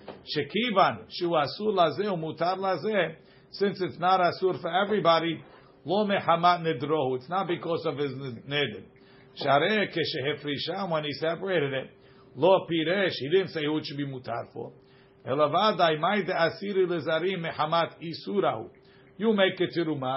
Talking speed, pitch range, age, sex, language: 85 wpm, 140-180 Hz, 50-69, male, English